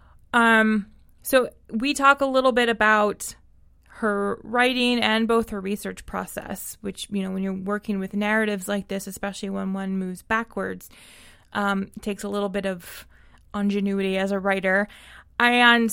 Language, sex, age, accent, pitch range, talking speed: English, female, 20-39, American, 195-220 Hz, 155 wpm